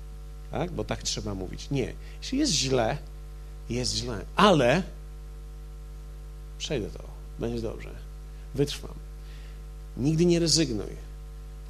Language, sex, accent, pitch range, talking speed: Polish, male, native, 115-180 Hz, 110 wpm